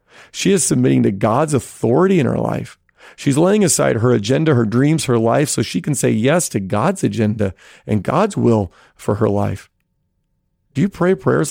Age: 40-59